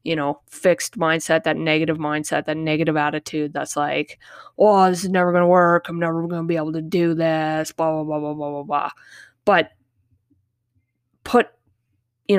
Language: English